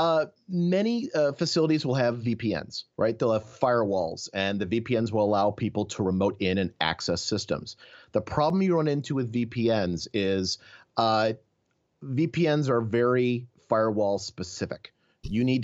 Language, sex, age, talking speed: English, male, 30-49, 150 wpm